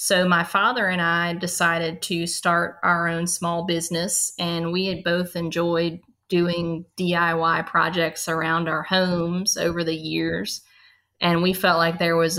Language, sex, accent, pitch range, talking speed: English, female, American, 165-185 Hz, 155 wpm